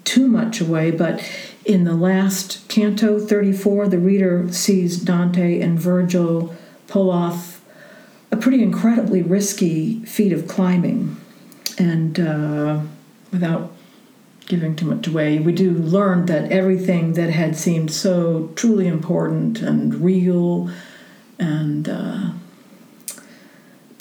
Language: English